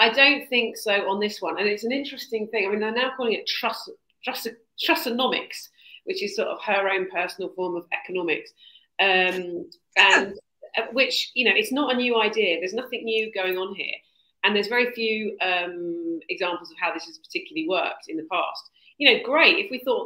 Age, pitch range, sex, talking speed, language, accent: 40-59, 195-270 Hz, female, 205 wpm, English, British